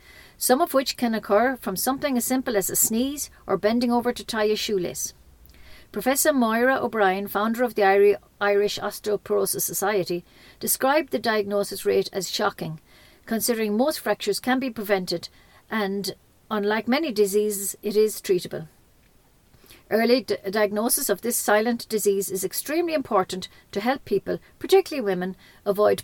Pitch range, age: 195-245 Hz, 50-69